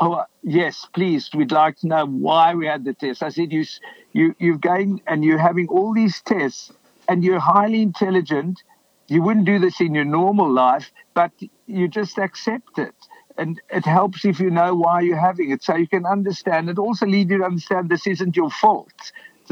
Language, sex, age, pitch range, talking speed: English, male, 60-79, 155-195 Hz, 205 wpm